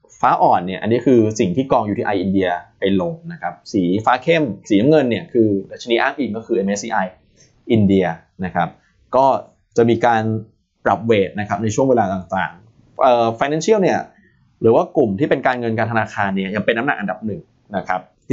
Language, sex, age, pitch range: Thai, male, 20-39, 100-125 Hz